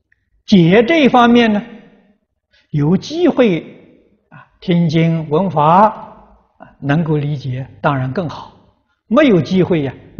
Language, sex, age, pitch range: Chinese, male, 60-79, 130-195 Hz